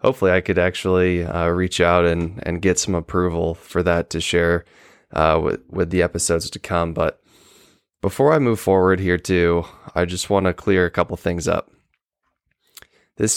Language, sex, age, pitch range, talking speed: English, male, 20-39, 85-100 Hz, 180 wpm